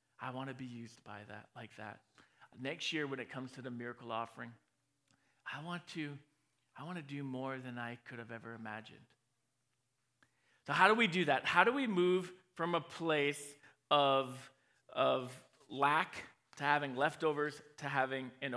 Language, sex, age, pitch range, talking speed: English, male, 40-59, 135-175 Hz, 175 wpm